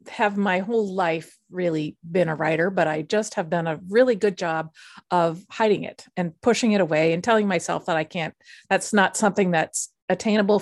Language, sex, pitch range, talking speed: English, female, 170-210 Hz, 200 wpm